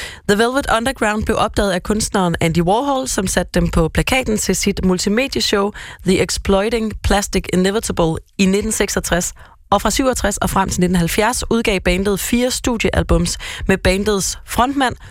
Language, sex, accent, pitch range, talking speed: Danish, female, native, 175-215 Hz, 145 wpm